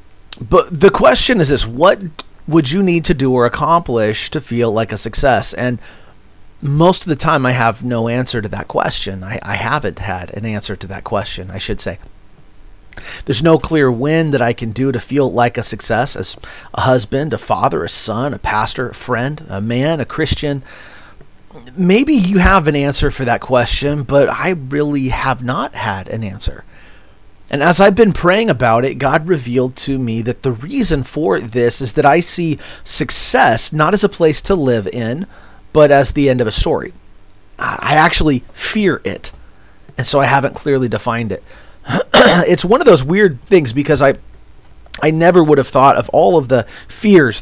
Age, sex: 40-59, male